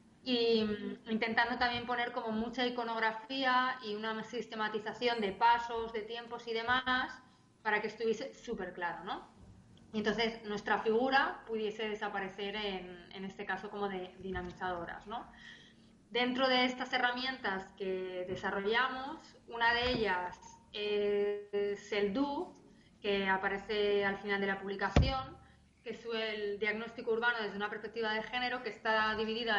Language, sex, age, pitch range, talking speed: Spanish, female, 20-39, 210-250 Hz, 140 wpm